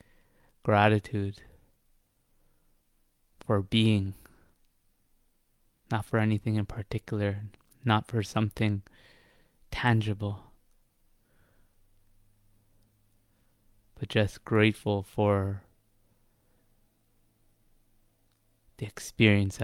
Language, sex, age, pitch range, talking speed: English, male, 20-39, 95-110 Hz, 55 wpm